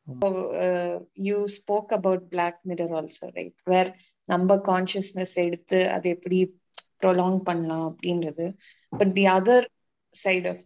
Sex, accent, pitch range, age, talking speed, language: female, native, 180-205 Hz, 20-39, 125 wpm, Tamil